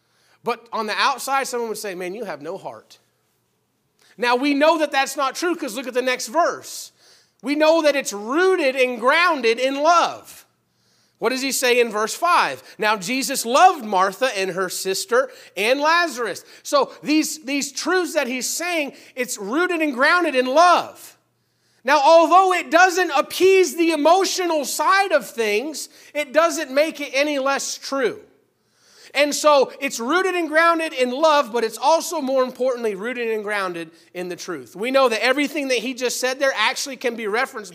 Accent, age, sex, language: American, 30-49, male, English